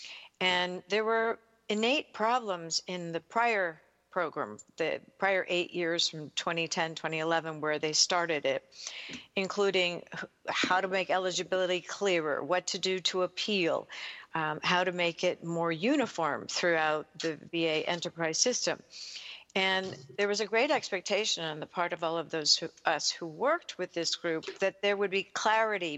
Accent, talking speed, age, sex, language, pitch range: American, 155 wpm, 50-69, female, English, 170-200 Hz